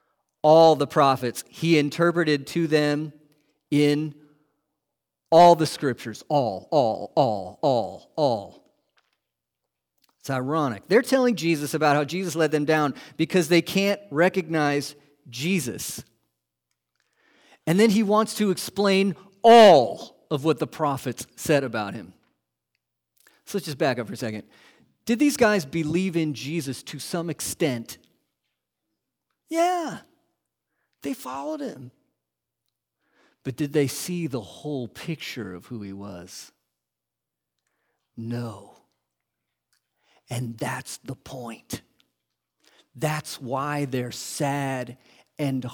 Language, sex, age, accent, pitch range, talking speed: English, male, 40-59, American, 120-165 Hz, 115 wpm